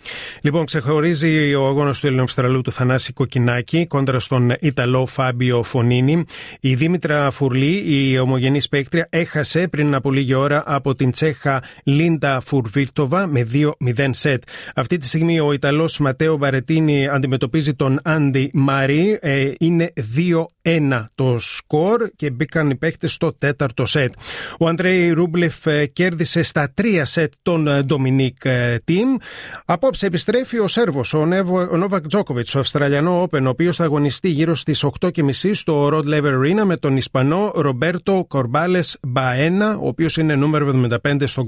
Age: 30-49